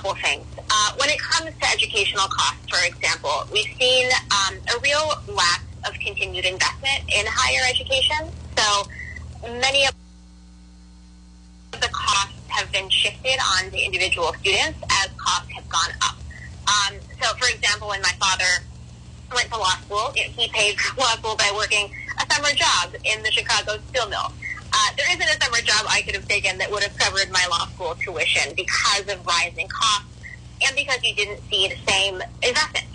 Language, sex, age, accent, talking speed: English, female, 20-39, American, 170 wpm